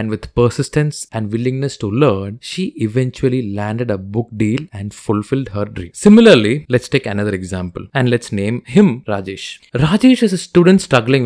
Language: Tamil